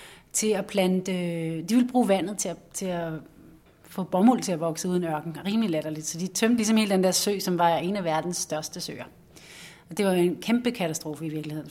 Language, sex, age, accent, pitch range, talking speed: Danish, female, 30-49, native, 175-220 Hz, 220 wpm